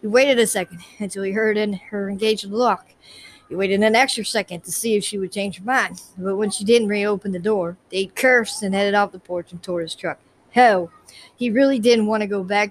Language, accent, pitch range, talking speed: English, American, 185-225 Hz, 240 wpm